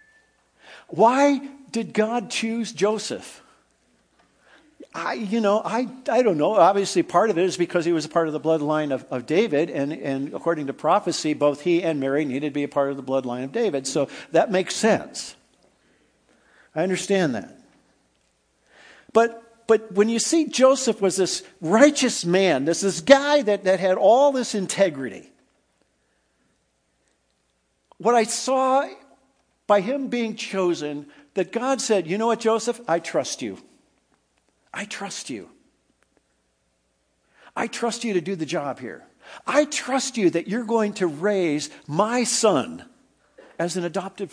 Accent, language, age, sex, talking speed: American, English, 50-69, male, 155 wpm